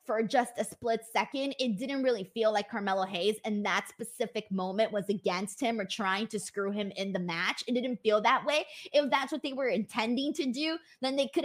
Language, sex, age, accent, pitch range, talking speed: English, female, 20-39, American, 205-270 Hz, 225 wpm